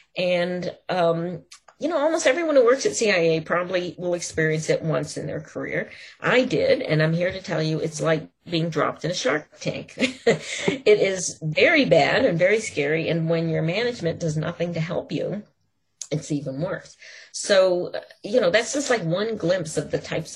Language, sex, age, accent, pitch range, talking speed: English, female, 40-59, American, 150-185 Hz, 190 wpm